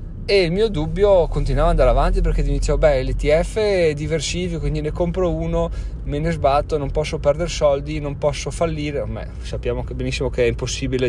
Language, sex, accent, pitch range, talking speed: Italian, male, native, 120-155 Hz, 190 wpm